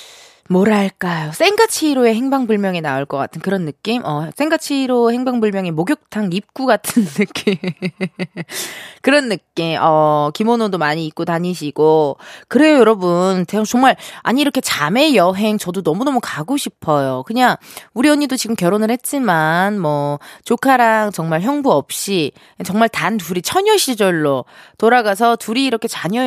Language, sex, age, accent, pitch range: Korean, female, 20-39, native, 175-260 Hz